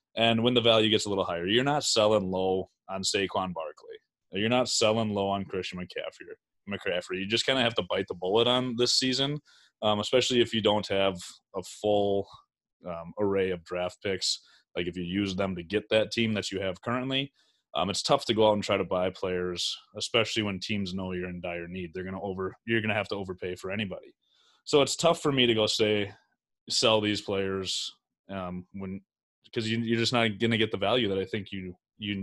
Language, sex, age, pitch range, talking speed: English, male, 20-39, 95-115 Hz, 220 wpm